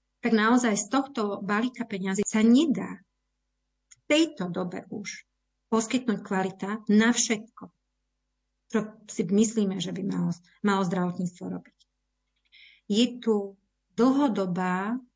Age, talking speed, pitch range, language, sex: 30-49, 110 wpm, 190-230 Hz, Slovak, female